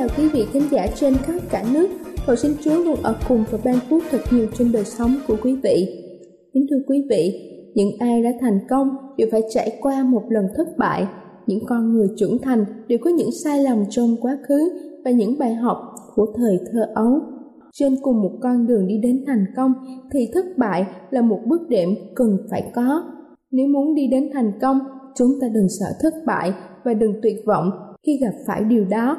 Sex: female